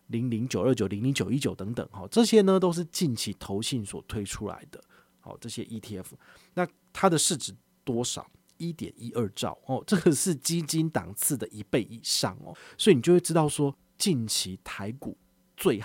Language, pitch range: Chinese, 105-145 Hz